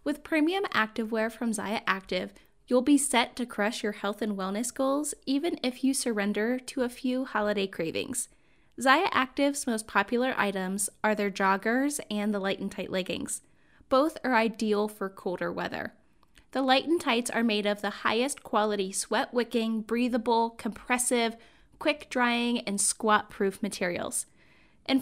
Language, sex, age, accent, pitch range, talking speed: English, female, 10-29, American, 205-260 Hz, 160 wpm